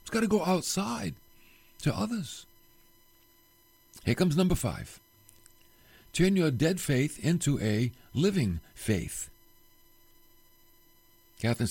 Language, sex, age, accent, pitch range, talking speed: English, male, 60-79, American, 110-180 Hz, 100 wpm